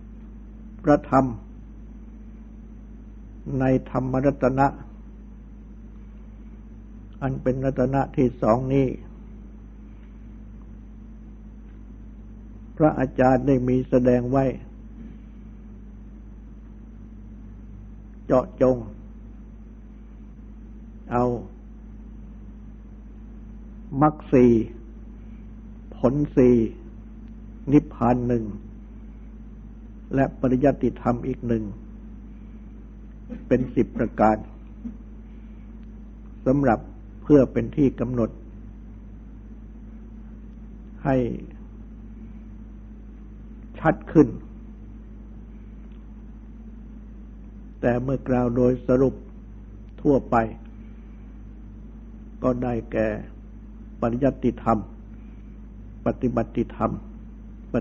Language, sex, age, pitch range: Thai, male, 60-79, 110-130 Hz